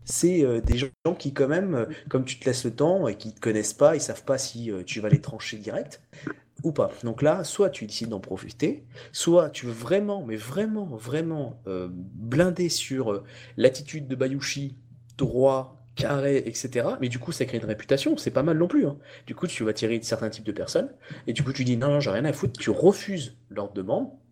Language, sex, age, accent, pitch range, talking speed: French, male, 30-49, French, 120-150 Hz, 235 wpm